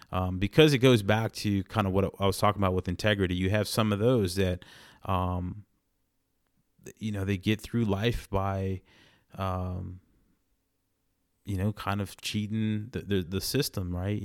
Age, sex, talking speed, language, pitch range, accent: 30-49, male, 170 wpm, English, 90-105 Hz, American